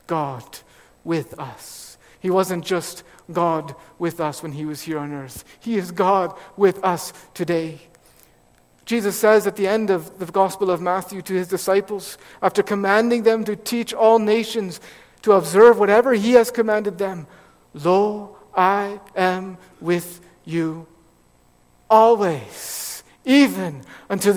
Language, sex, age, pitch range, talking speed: English, male, 50-69, 155-210 Hz, 140 wpm